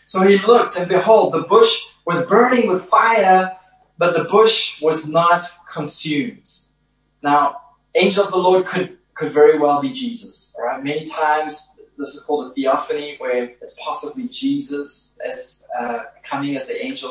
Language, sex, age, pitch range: English, male, 20-39, 150-235 Hz